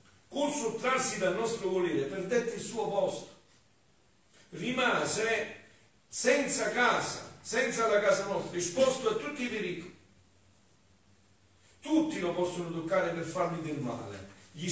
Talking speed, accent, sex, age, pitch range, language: 120 wpm, native, male, 50-69, 160-230 Hz, Italian